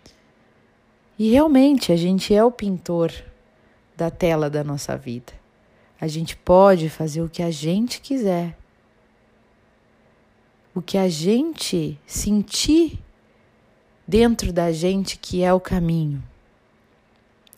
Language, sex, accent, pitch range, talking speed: Portuguese, female, Brazilian, 155-200 Hz, 115 wpm